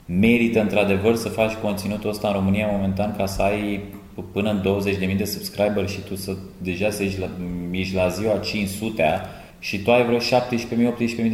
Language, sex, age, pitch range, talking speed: Romanian, male, 20-39, 95-115 Hz, 175 wpm